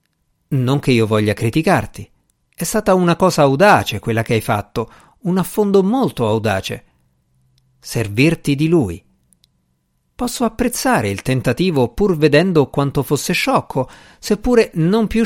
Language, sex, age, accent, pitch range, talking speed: Italian, male, 50-69, native, 115-175 Hz, 130 wpm